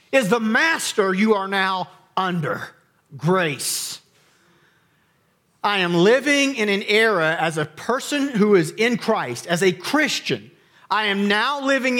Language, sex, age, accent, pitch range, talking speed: English, male, 40-59, American, 160-210 Hz, 140 wpm